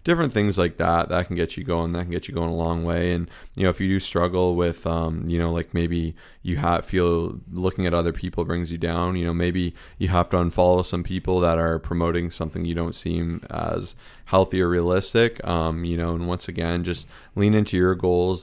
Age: 20-39